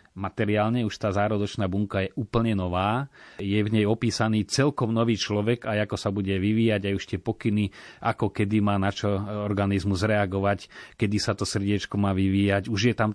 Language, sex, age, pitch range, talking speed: Slovak, male, 30-49, 95-115 Hz, 185 wpm